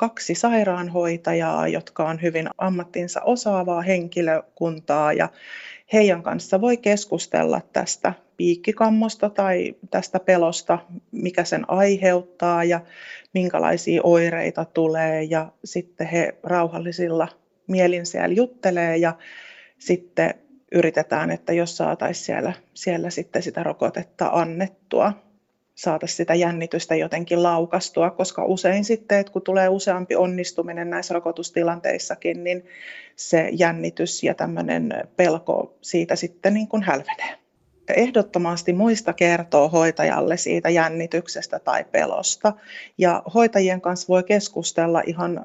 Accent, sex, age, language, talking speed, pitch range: native, female, 30-49, Finnish, 110 wpm, 165-200 Hz